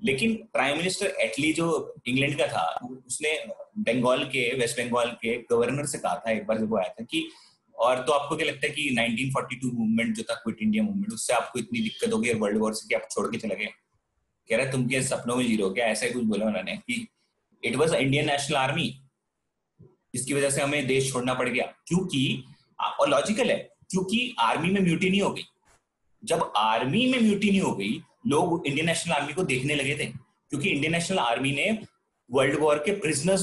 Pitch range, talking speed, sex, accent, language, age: 125-185 Hz, 145 wpm, male, Indian, English, 30-49